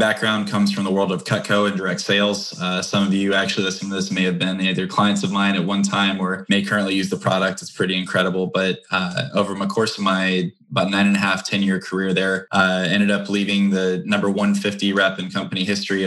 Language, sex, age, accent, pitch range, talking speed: English, male, 10-29, American, 95-100 Hz, 245 wpm